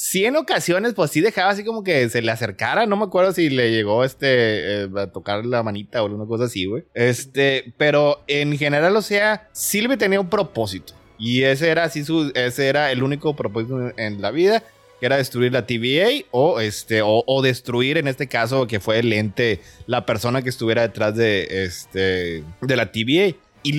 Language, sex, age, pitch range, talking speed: Spanish, male, 20-39, 115-145 Hz, 200 wpm